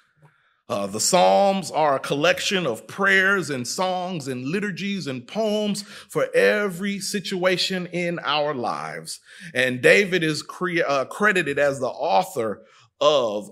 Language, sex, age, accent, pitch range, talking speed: English, male, 30-49, American, 145-210 Hz, 130 wpm